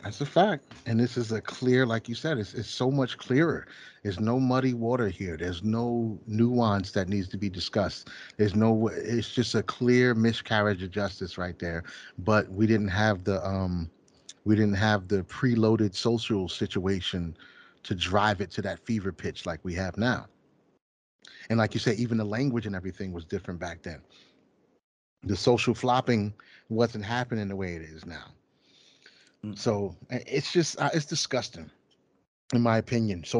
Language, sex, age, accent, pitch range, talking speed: English, male, 30-49, American, 100-125 Hz, 175 wpm